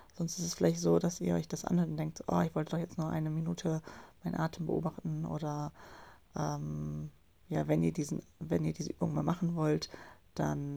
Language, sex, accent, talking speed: German, female, German, 205 wpm